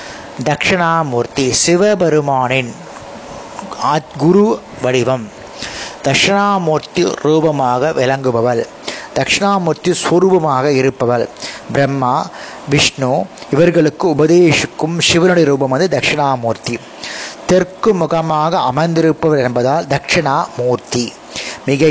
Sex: male